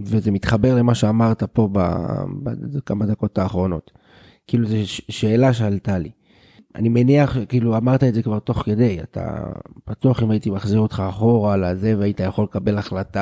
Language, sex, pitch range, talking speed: Hebrew, male, 105-120 Hz, 170 wpm